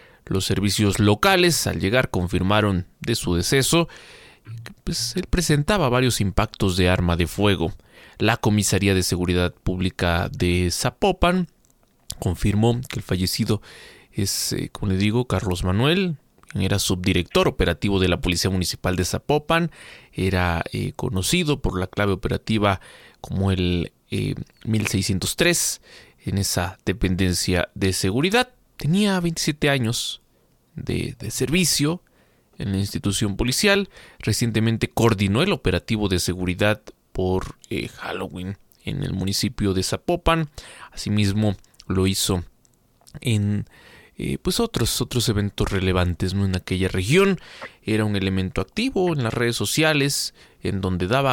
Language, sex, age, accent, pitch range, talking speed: Spanish, male, 30-49, Mexican, 95-130 Hz, 125 wpm